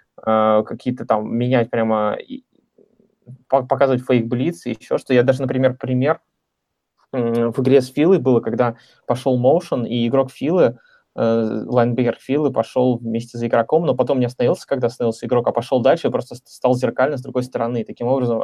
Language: Russian